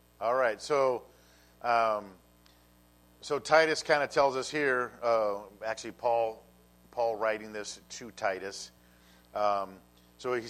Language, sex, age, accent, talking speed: English, male, 50-69, American, 125 wpm